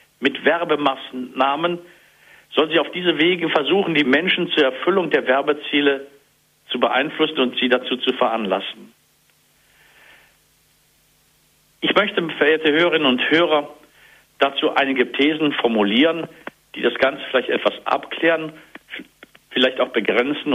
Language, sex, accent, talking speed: German, male, German, 115 wpm